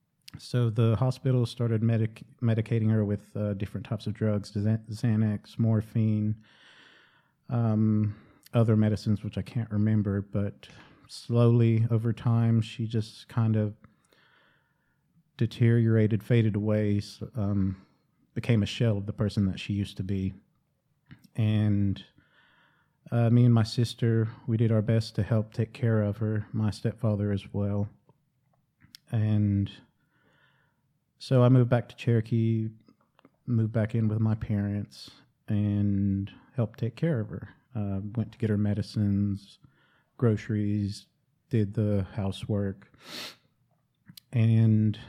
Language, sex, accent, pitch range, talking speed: English, male, American, 105-115 Hz, 125 wpm